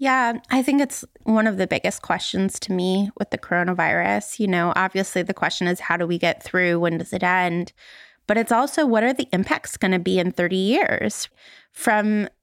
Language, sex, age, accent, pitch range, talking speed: English, female, 20-39, American, 195-245 Hz, 210 wpm